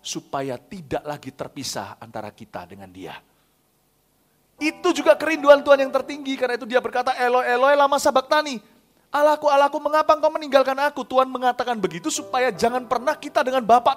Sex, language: male, Indonesian